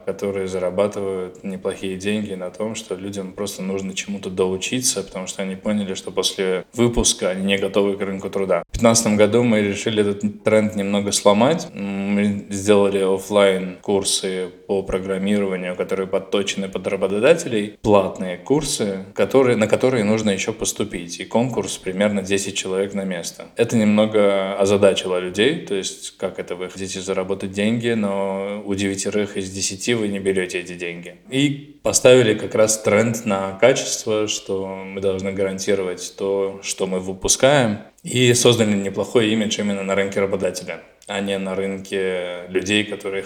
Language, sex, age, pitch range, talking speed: Russian, male, 20-39, 95-105 Hz, 150 wpm